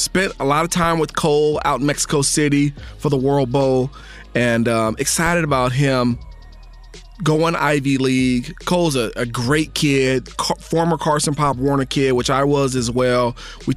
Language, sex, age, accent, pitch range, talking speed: English, male, 30-49, American, 130-150 Hz, 175 wpm